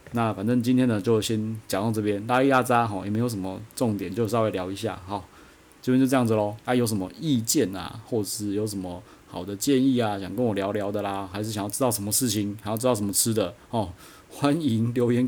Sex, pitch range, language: male, 105-135 Hz, Chinese